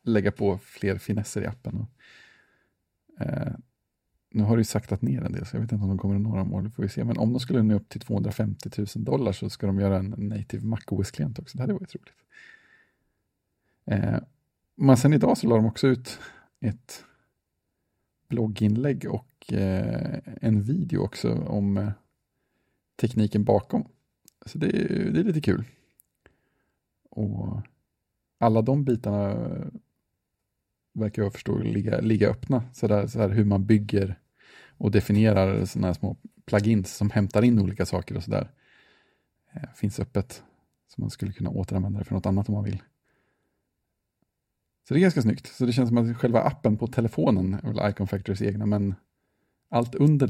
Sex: male